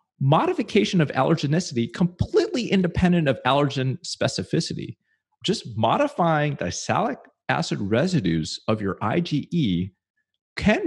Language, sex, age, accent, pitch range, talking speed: English, male, 30-49, American, 100-170 Hz, 100 wpm